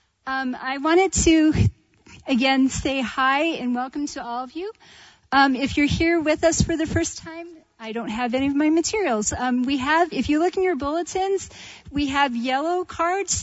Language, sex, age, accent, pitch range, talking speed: English, female, 40-59, American, 250-305 Hz, 190 wpm